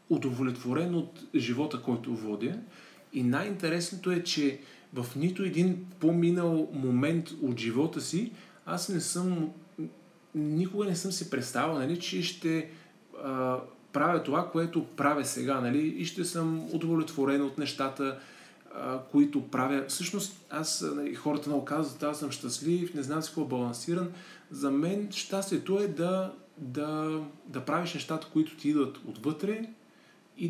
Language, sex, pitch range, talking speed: Bulgarian, male, 130-175 Hz, 145 wpm